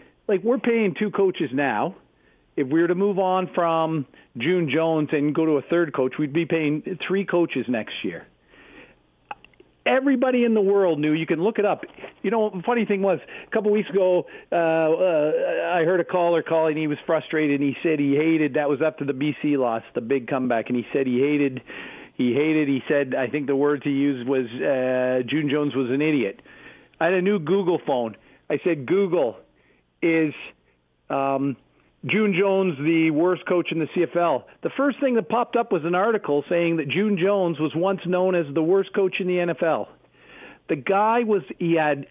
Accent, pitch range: American, 145-190 Hz